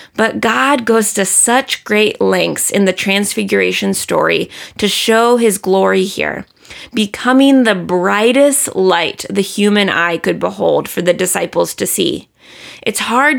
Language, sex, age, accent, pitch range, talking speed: English, female, 20-39, American, 185-235 Hz, 145 wpm